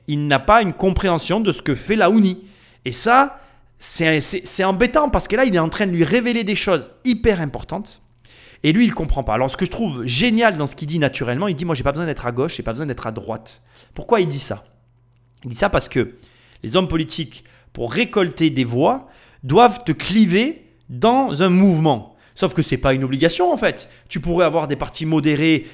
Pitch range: 135-215 Hz